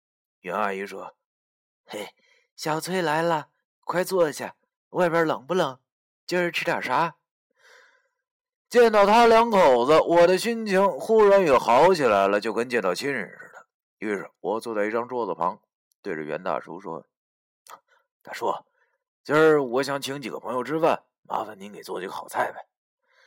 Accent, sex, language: native, male, Chinese